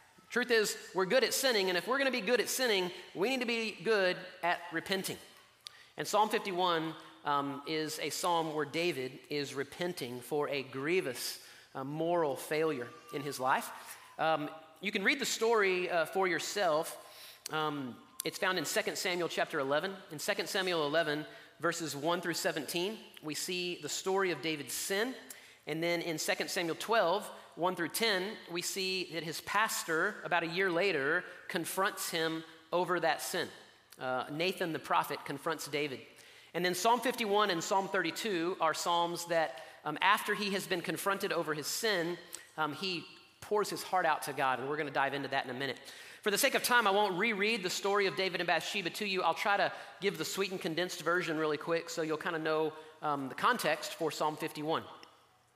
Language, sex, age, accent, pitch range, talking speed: English, male, 30-49, American, 155-190 Hz, 195 wpm